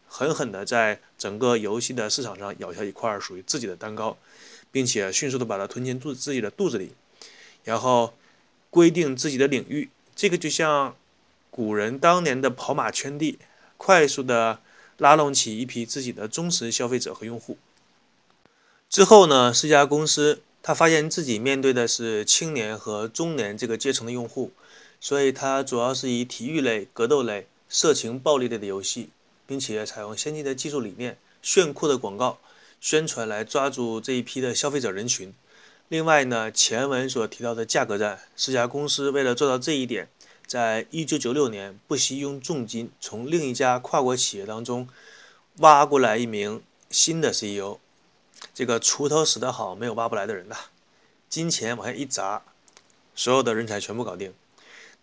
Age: 20-39